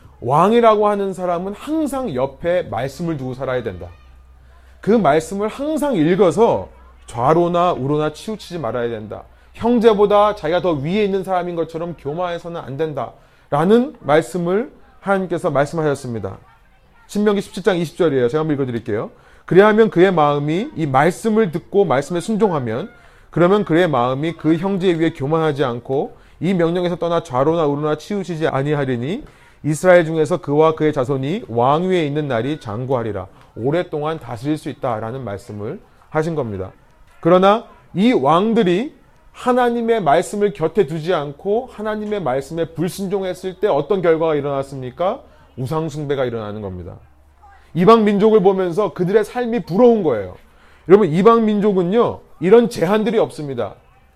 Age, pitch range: 30-49, 140-205 Hz